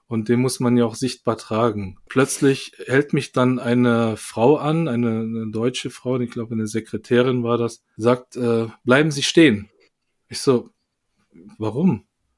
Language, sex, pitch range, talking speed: German, male, 120-175 Hz, 160 wpm